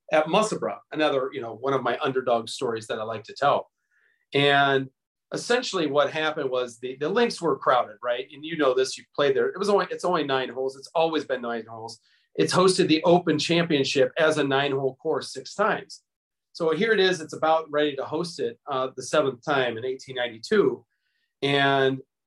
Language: English